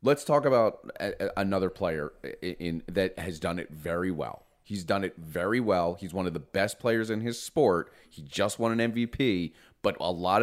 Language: English